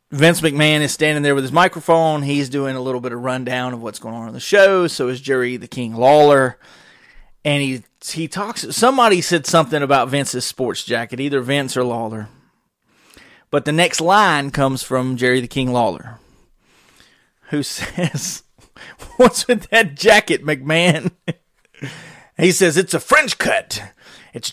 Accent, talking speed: American, 165 wpm